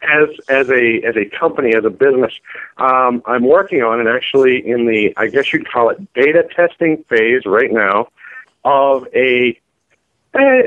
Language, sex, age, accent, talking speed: English, male, 50-69, American, 170 wpm